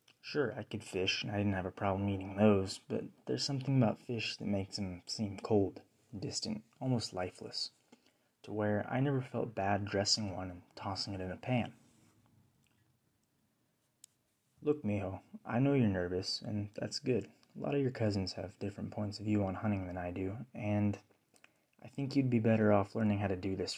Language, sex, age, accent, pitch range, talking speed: English, male, 20-39, American, 95-115 Hz, 190 wpm